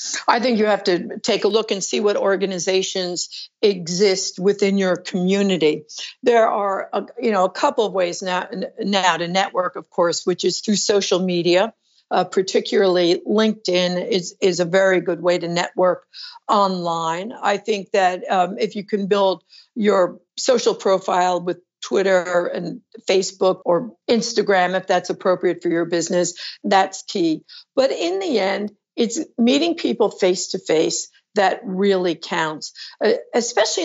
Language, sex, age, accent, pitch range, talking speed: English, female, 60-79, American, 185-220 Hz, 155 wpm